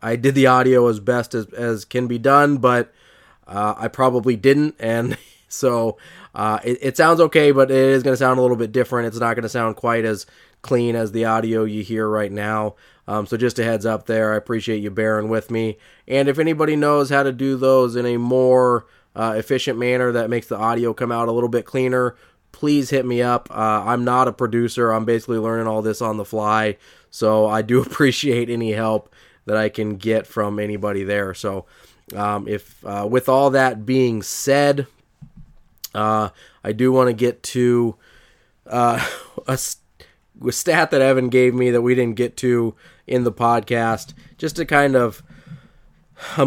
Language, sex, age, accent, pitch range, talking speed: English, male, 20-39, American, 110-130 Hz, 200 wpm